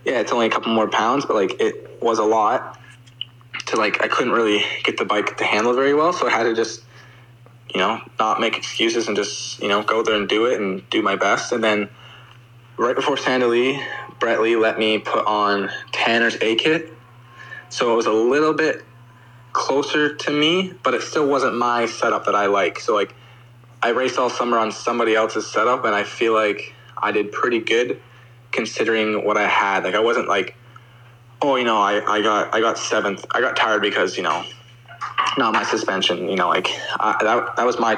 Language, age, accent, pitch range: English, 20-39, American, 110-125 Hz